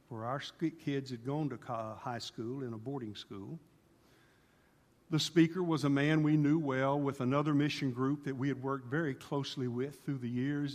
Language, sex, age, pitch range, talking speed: English, male, 50-69, 125-145 Hz, 190 wpm